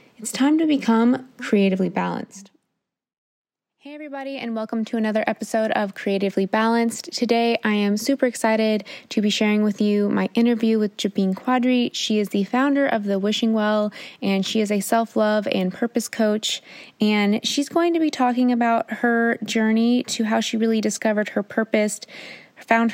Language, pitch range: English, 195-230 Hz